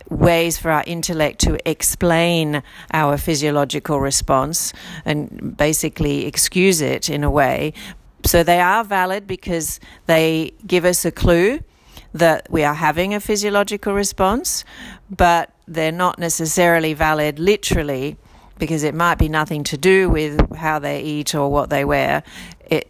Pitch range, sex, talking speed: 150-175 Hz, female, 145 wpm